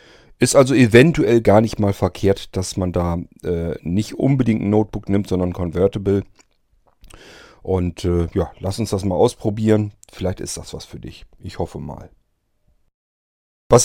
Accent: German